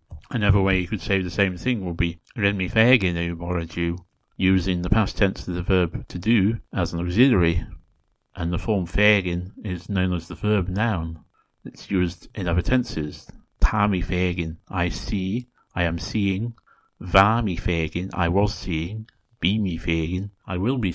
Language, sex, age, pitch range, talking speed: English, male, 60-79, 85-110 Hz, 160 wpm